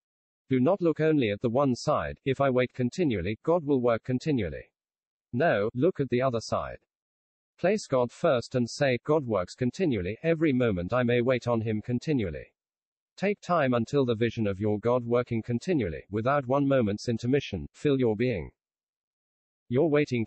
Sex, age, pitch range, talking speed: male, 50-69, 105-135 Hz, 170 wpm